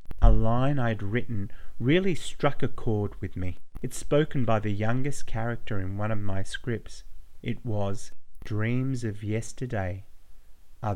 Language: English